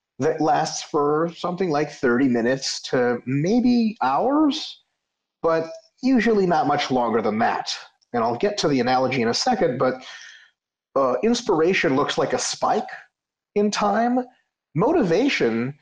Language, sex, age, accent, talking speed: English, male, 30-49, American, 135 wpm